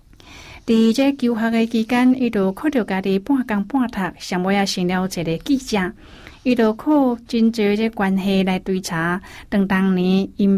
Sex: female